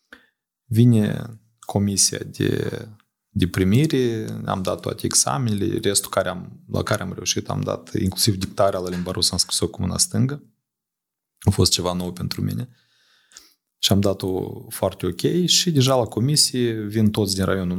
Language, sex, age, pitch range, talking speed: Romanian, male, 30-49, 100-120 Hz, 160 wpm